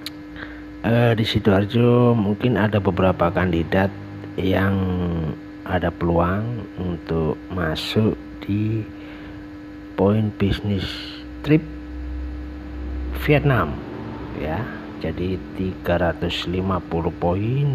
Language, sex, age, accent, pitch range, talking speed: Indonesian, male, 50-69, native, 85-105 Hz, 70 wpm